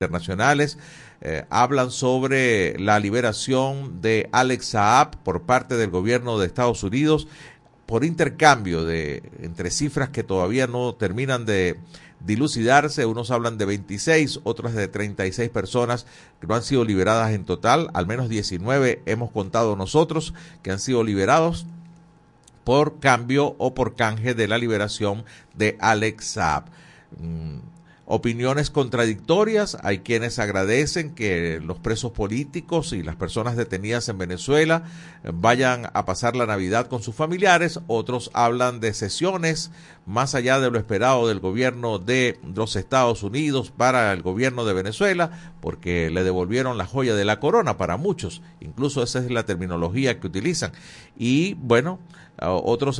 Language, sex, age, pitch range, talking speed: Spanish, male, 50-69, 105-140 Hz, 145 wpm